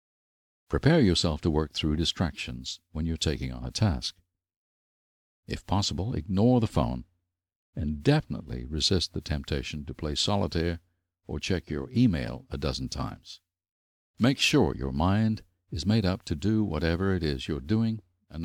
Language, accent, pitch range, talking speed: English, American, 75-95 Hz, 155 wpm